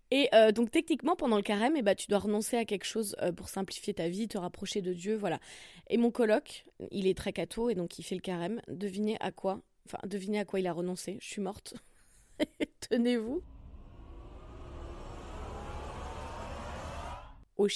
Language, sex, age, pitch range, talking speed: French, female, 20-39, 190-235 Hz, 175 wpm